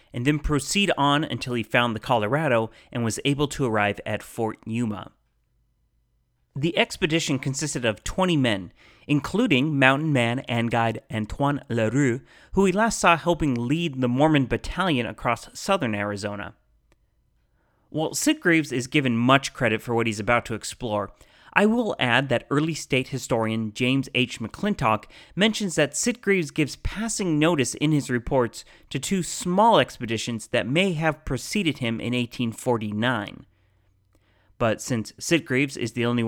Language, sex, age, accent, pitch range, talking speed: English, male, 30-49, American, 110-150 Hz, 150 wpm